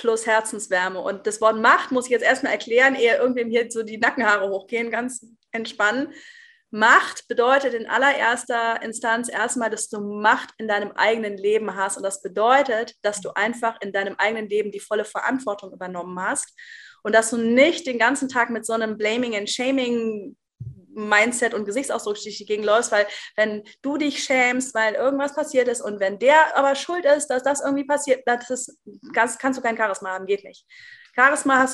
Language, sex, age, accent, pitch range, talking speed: German, female, 20-39, German, 210-265 Hz, 185 wpm